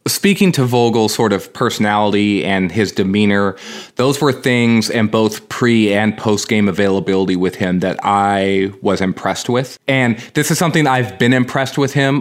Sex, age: male, 20-39